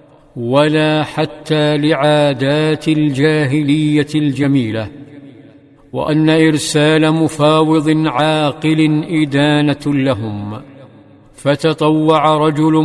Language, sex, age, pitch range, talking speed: Arabic, male, 50-69, 145-155 Hz, 60 wpm